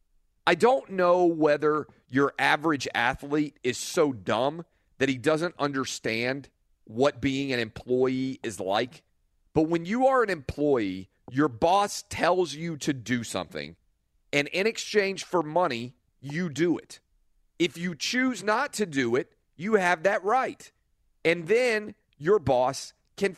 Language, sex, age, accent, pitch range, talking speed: English, male, 40-59, American, 130-180 Hz, 145 wpm